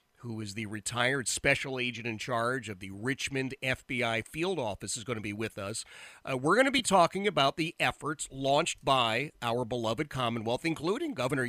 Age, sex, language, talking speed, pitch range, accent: 40-59, male, English, 190 wpm, 115-150 Hz, American